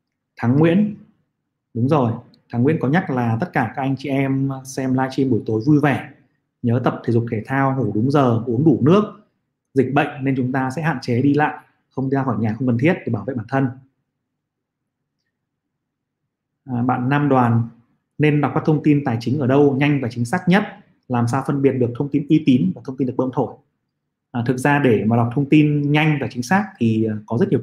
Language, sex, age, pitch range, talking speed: Vietnamese, male, 20-39, 125-150 Hz, 225 wpm